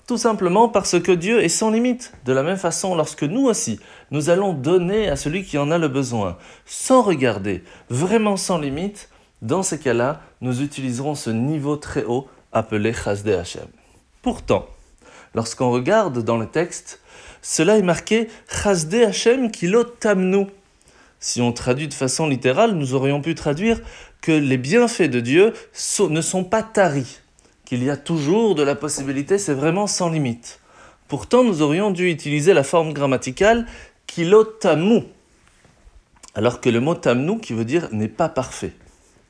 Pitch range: 130-205 Hz